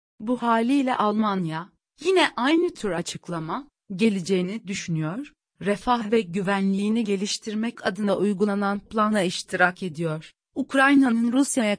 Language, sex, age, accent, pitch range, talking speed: Turkish, female, 40-59, native, 195-255 Hz, 100 wpm